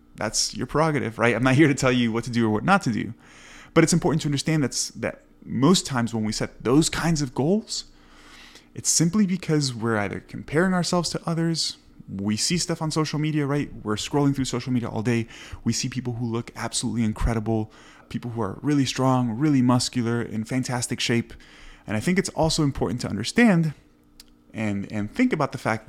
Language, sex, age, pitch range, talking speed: English, male, 20-39, 105-145 Hz, 205 wpm